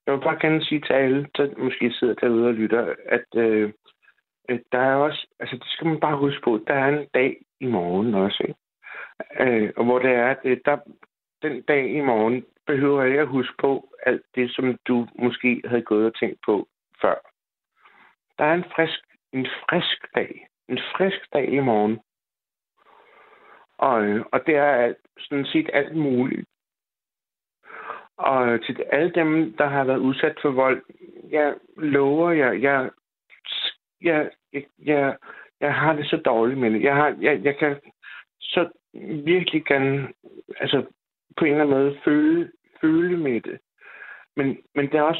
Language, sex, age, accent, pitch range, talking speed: Danish, male, 60-79, native, 125-160 Hz, 165 wpm